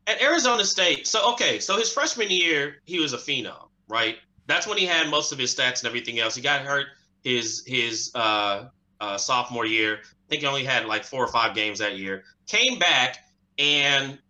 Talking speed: 205 wpm